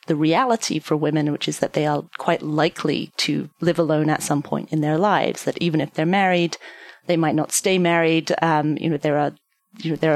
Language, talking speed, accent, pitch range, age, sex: English, 215 wpm, British, 155-185 Hz, 30-49, female